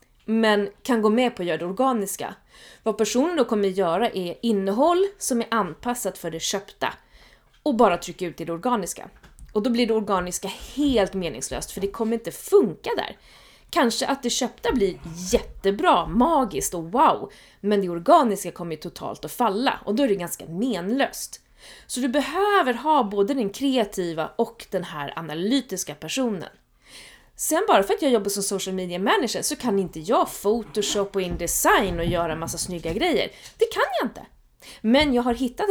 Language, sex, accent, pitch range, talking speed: Swedish, female, native, 185-255 Hz, 180 wpm